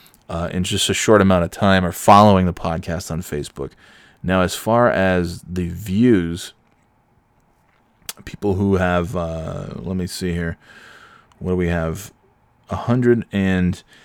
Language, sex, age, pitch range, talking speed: English, male, 20-39, 90-120 Hz, 150 wpm